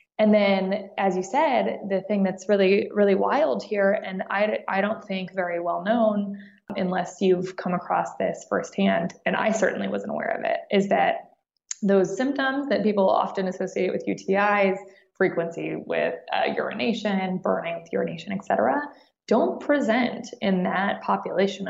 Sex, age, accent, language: female, 20-39, American, English